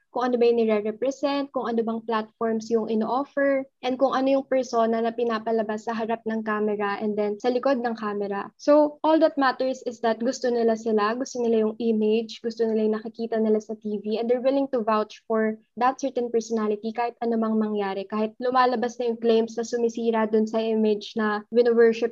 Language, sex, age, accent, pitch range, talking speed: Filipino, female, 20-39, native, 220-250 Hz, 195 wpm